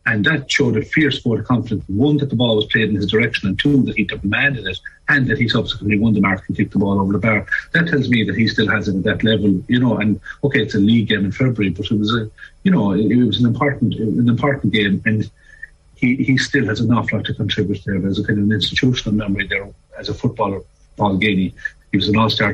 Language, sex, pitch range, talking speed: English, male, 95-110 Hz, 265 wpm